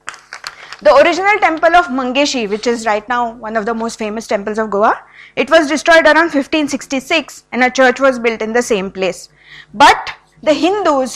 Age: 20-39